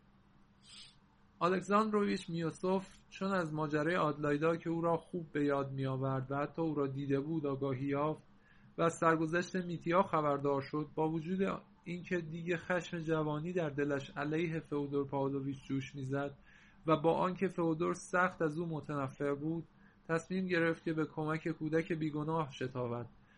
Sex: male